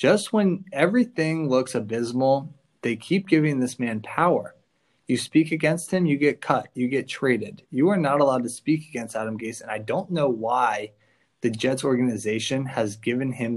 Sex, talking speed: male, 180 wpm